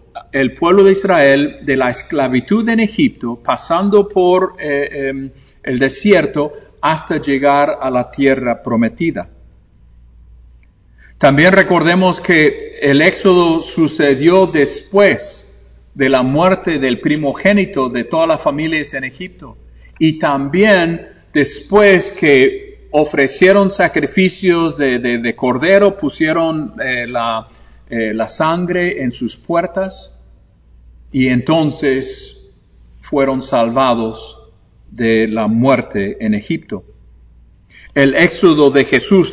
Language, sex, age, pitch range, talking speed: English, male, 50-69, 115-175 Hz, 105 wpm